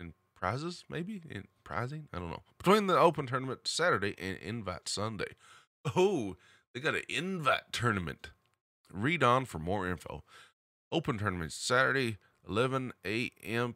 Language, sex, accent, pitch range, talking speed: English, male, American, 90-125 Hz, 130 wpm